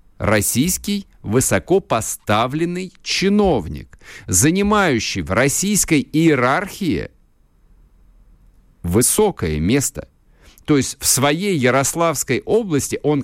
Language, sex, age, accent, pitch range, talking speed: Russian, male, 50-69, native, 115-175 Hz, 75 wpm